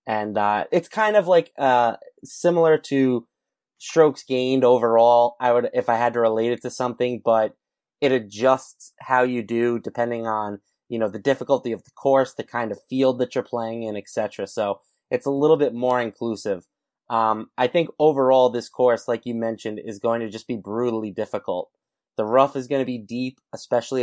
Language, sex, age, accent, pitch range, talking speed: English, male, 30-49, American, 115-135 Hz, 195 wpm